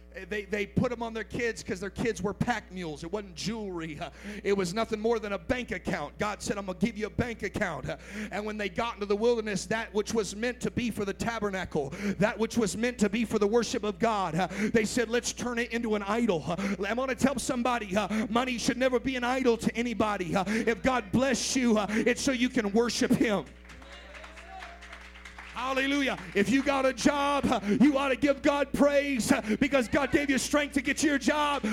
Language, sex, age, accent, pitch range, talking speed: English, male, 40-59, American, 200-270 Hz, 215 wpm